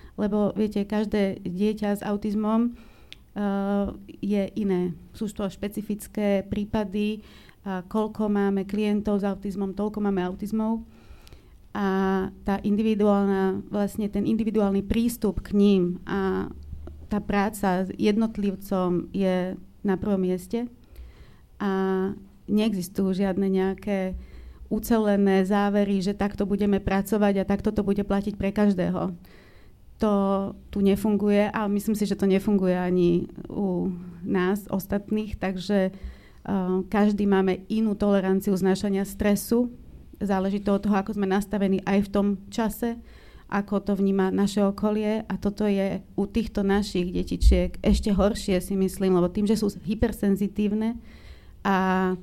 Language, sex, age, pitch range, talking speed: Slovak, female, 30-49, 190-210 Hz, 130 wpm